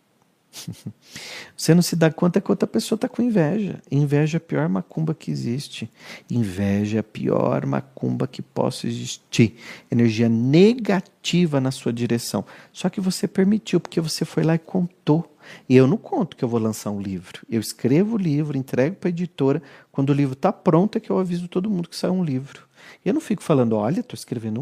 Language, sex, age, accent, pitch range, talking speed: Portuguese, male, 40-59, Brazilian, 120-180 Hz, 200 wpm